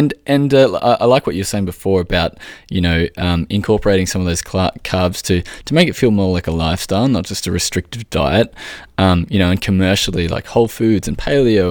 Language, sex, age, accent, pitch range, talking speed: English, male, 20-39, Australian, 85-100 Hz, 230 wpm